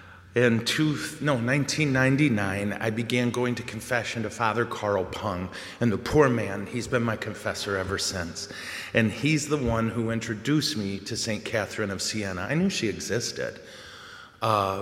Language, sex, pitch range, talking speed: English, male, 105-125 Hz, 160 wpm